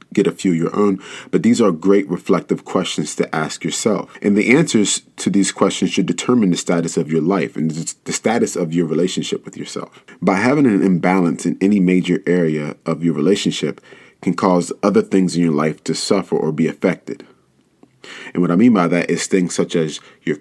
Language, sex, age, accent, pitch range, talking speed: English, male, 30-49, American, 80-95 Hz, 205 wpm